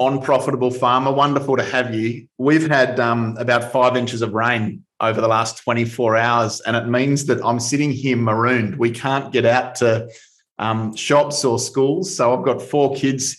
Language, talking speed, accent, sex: English, 190 wpm, Australian, male